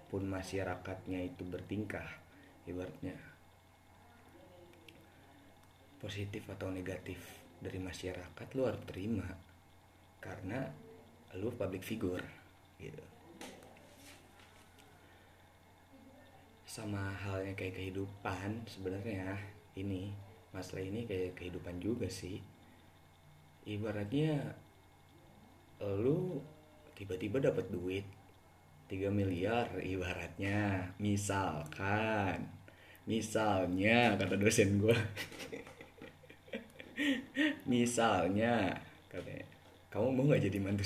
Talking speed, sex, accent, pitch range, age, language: 75 wpm, male, native, 90-105 Hz, 20-39, Indonesian